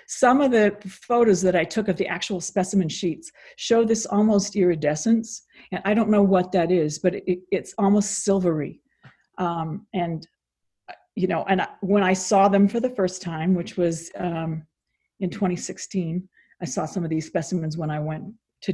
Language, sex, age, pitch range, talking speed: English, female, 50-69, 175-205 Hz, 175 wpm